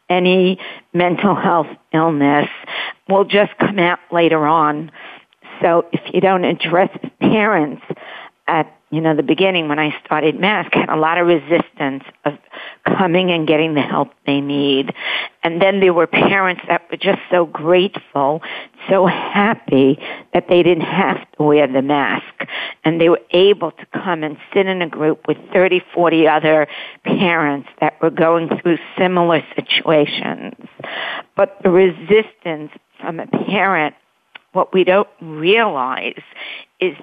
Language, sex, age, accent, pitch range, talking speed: English, female, 50-69, American, 155-185 Hz, 145 wpm